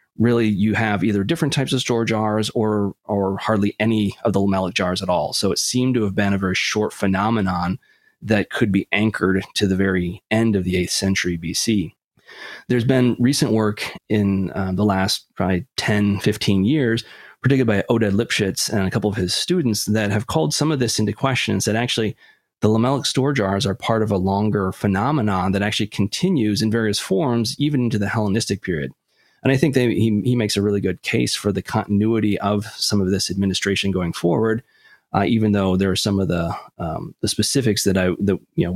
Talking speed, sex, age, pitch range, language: 205 wpm, male, 30-49, 95-115 Hz, English